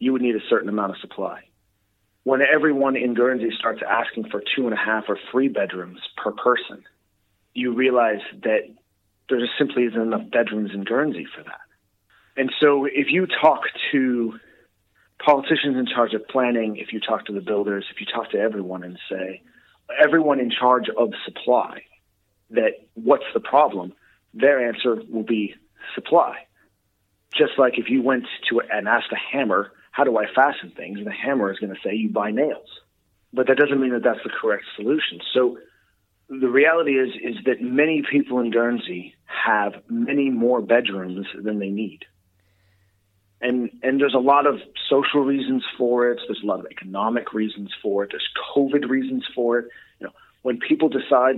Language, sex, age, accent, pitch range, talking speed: English, male, 40-59, American, 105-135 Hz, 180 wpm